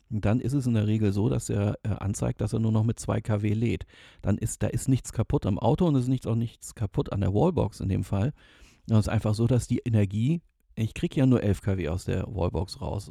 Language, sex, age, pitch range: German, male, 40-59, 100-120 Hz